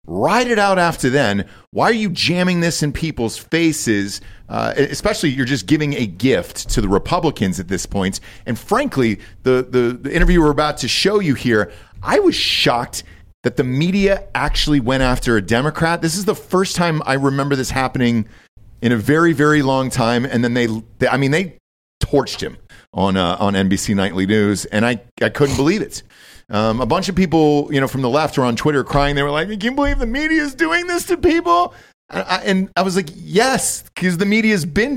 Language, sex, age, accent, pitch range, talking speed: English, male, 40-59, American, 120-200 Hz, 215 wpm